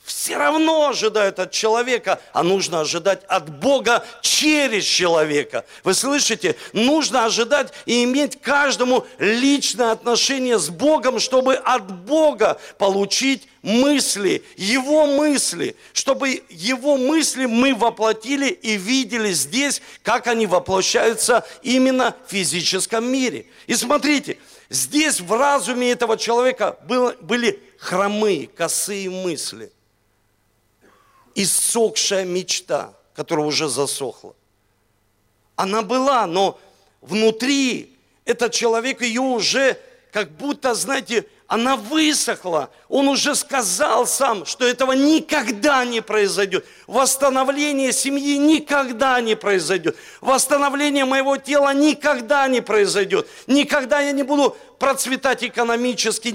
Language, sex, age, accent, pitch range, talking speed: Russian, male, 50-69, native, 210-280 Hz, 105 wpm